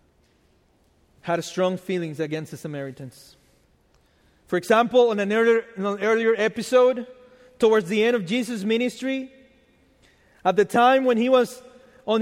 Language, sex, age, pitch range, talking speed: English, male, 30-49, 195-255 Hz, 130 wpm